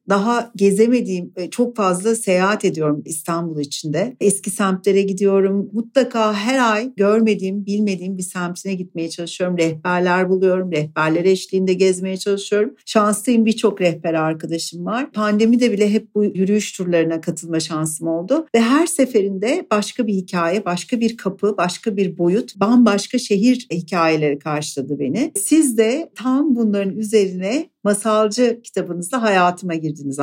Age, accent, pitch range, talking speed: 60-79, native, 175-230 Hz, 135 wpm